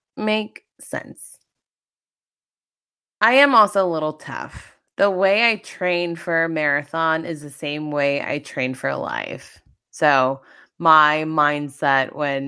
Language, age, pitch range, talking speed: English, 20-39, 145-195 Hz, 130 wpm